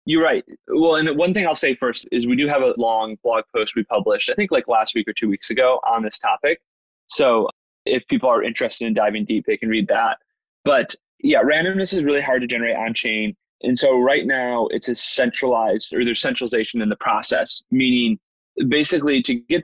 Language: English